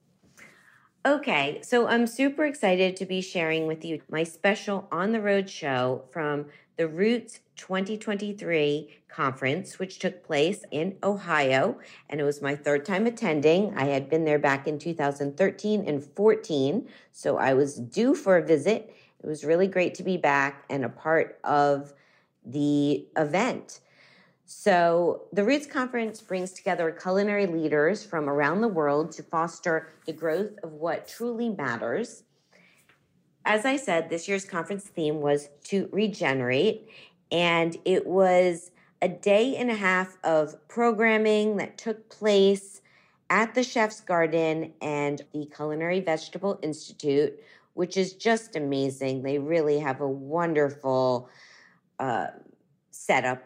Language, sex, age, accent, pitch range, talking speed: English, female, 40-59, American, 140-190 Hz, 140 wpm